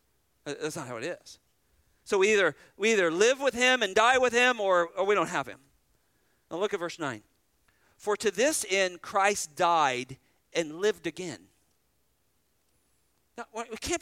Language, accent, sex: English, American, male